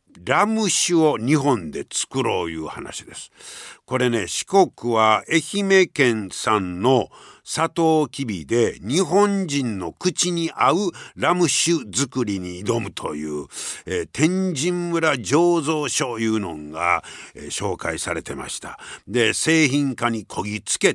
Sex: male